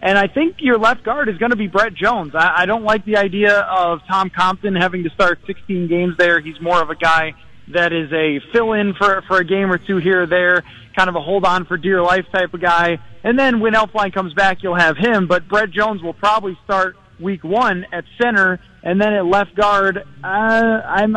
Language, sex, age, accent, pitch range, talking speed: English, male, 20-39, American, 175-205 Hz, 230 wpm